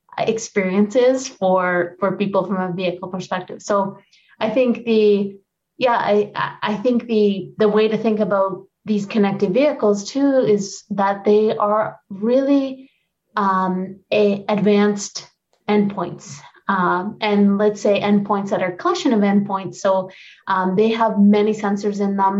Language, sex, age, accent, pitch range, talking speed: English, female, 20-39, American, 190-215 Hz, 140 wpm